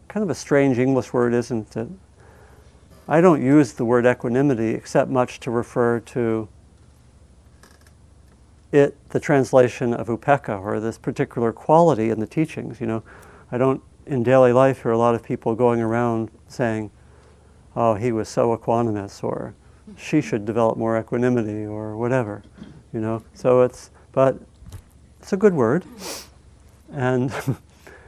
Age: 50-69